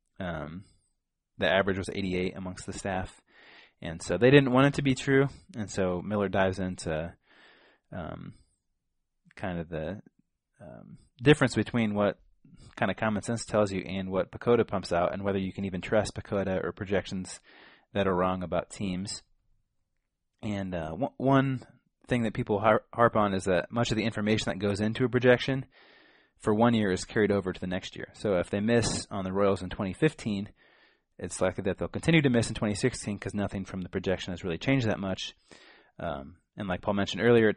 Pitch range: 90-115 Hz